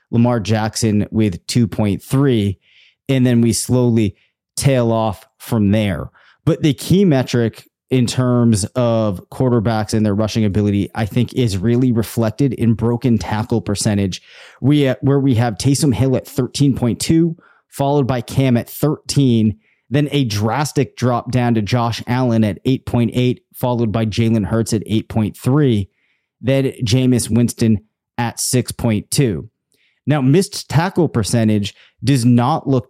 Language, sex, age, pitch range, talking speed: English, male, 30-49, 110-130 Hz, 135 wpm